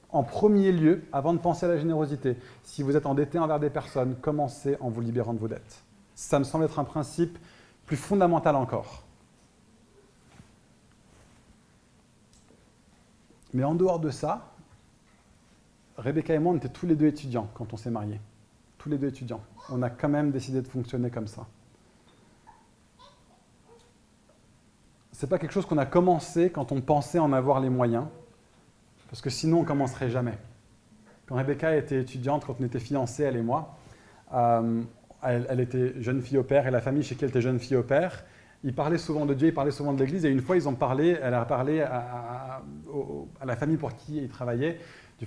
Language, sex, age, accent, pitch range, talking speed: French, male, 30-49, French, 120-150 Hz, 190 wpm